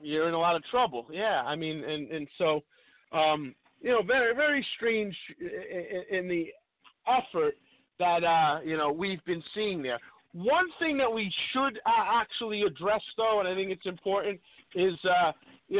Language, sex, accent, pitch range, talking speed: English, male, American, 170-220 Hz, 170 wpm